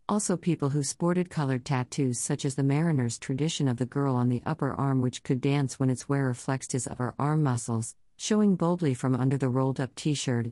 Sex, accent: female, American